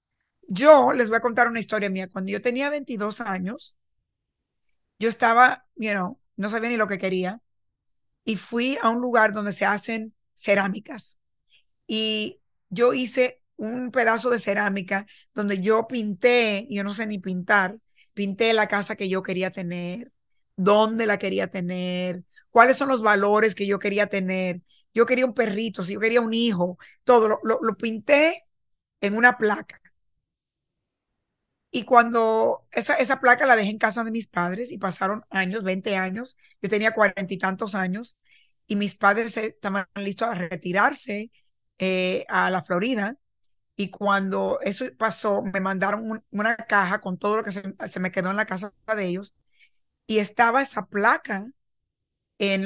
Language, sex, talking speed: English, female, 165 wpm